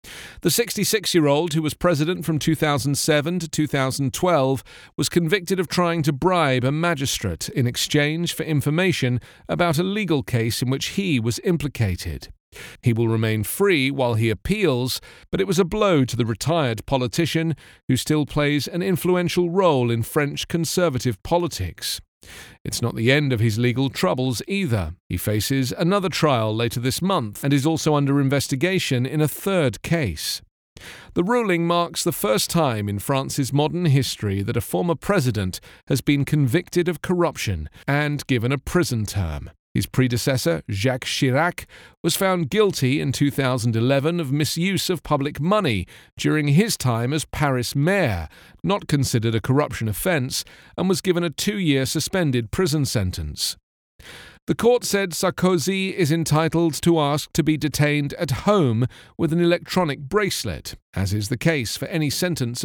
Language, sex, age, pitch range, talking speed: English, male, 40-59, 120-170 Hz, 155 wpm